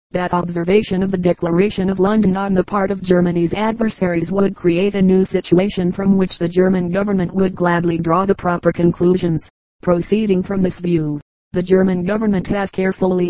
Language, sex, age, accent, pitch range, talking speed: English, female, 40-59, American, 180-195 Hz, 170 wpm